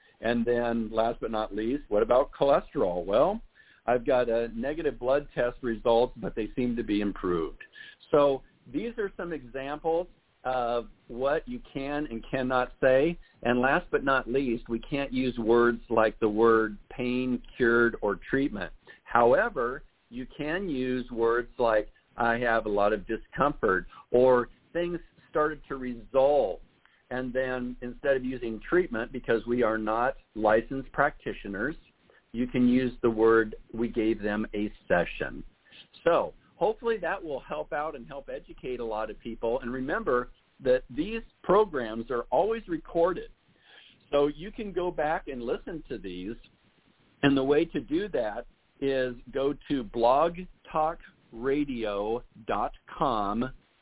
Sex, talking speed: male, 145 wpm